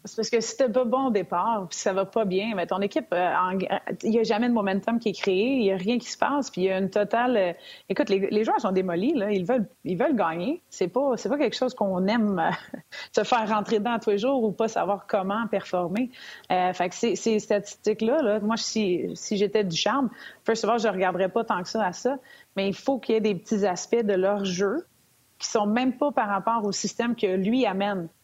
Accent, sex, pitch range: Canadian, female, 190-230 Hz